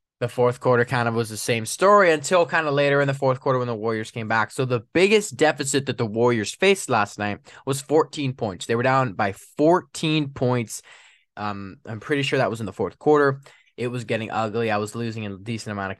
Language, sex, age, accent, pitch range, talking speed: English, male, 10-29, American, 110-155 Hz, 235 wpm